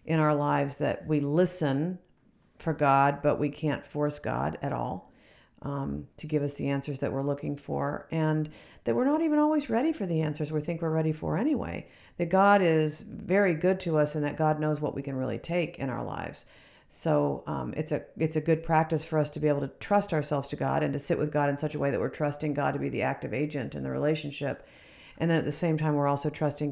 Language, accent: English, American